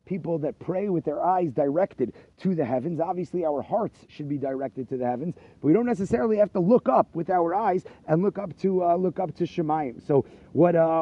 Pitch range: 155-195 Hz